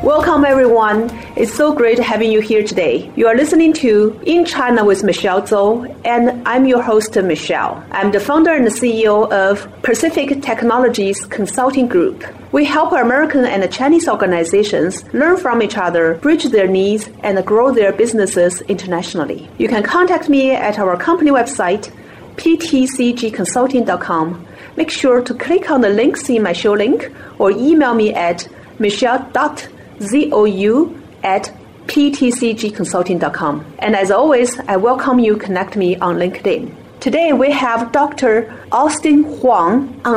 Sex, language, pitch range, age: female, English, 205-270 Hz, 40-59